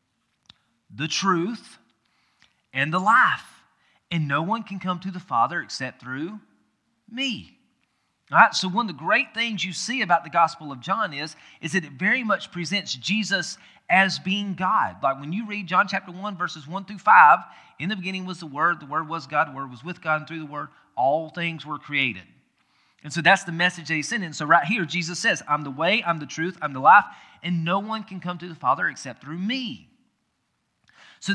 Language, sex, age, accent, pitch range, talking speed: English, male, 30-49, American, 150-195 Hz, 210 wpm